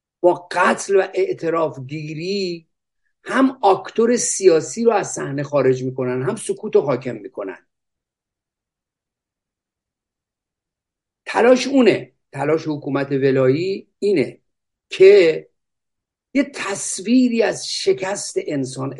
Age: 50-69